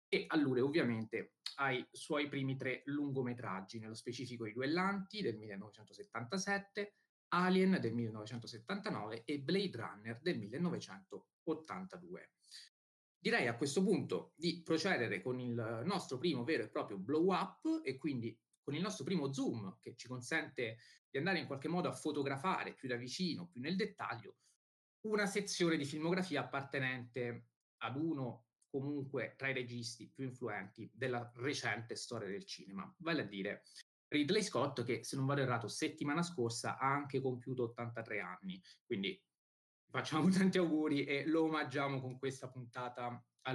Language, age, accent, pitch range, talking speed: Italian, 30-49, native, 120-170 Hz, 145 wpm